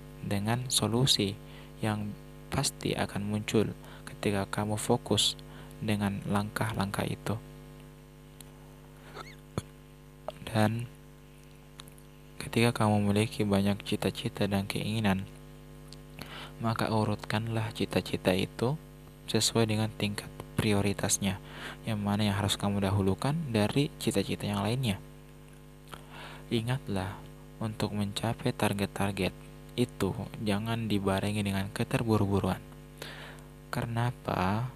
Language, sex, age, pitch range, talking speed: Indonesian, male, 20-39, 100-115 Hz, 85 wpm